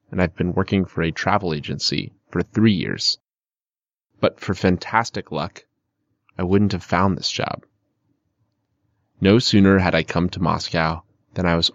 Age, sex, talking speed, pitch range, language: 30-49, male, 160 wpm, 85-105 Hz, Russian